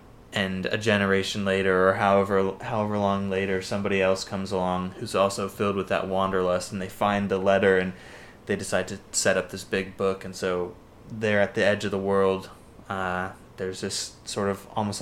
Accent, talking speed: American, 190 wpm